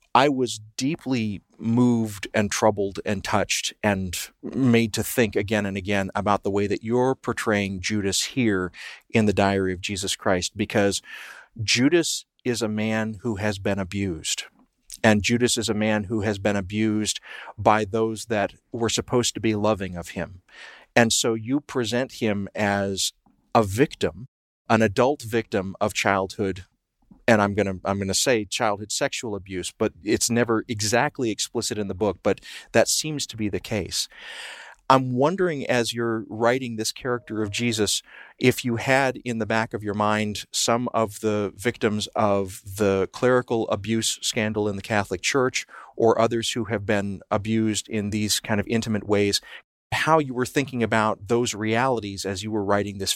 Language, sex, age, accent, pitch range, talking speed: English, male, 40-59, American, 100-120 Hz, 170 wpm